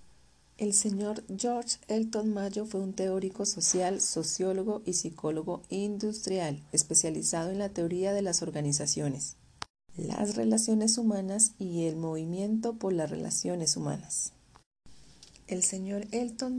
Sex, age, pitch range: female, 40-59, 175-220 Hz